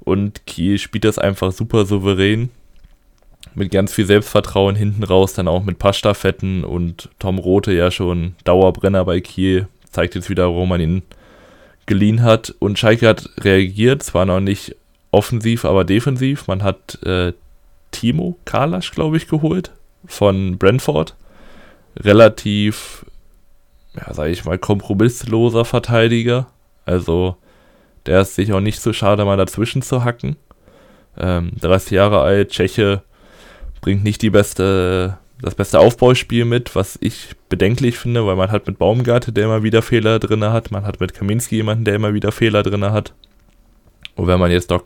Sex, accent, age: male, German, 20-39